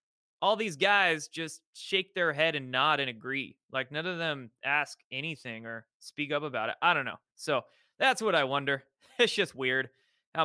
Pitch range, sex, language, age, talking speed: 135-185 Hz, male, English, 20-39, 195 wpm